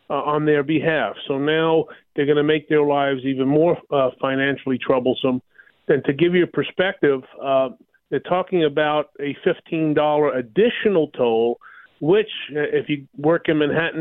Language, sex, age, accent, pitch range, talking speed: English, male, 40-59, American, 145-170 Hz, 165 wpm